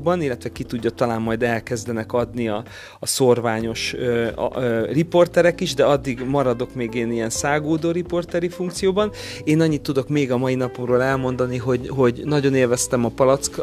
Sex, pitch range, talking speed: male, 120-145 Hz, 165 wpm